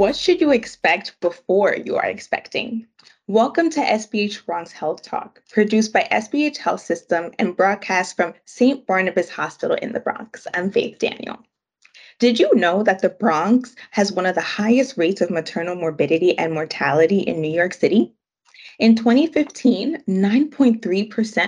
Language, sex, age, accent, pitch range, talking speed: English, female, 20-39, American, 175-245 Hz, 150 wpm